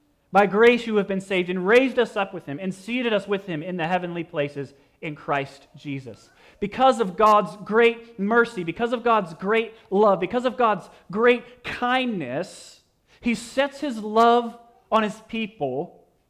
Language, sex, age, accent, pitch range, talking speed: English, male, 30-49, American, 170-240 Hz, 170 wpm